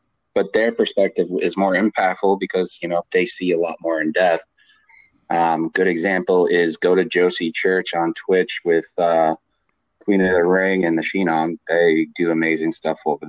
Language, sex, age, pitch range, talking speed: English, male, 30-49, 90-105 Hz, 185 wpm